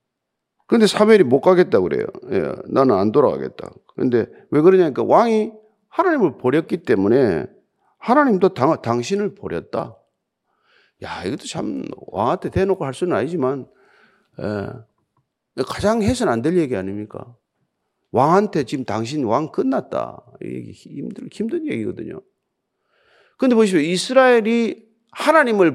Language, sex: Korean, male